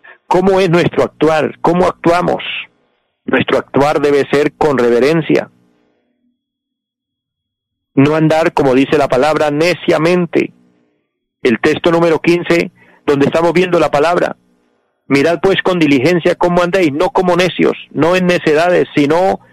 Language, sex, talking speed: Spanish, male, 125 wpm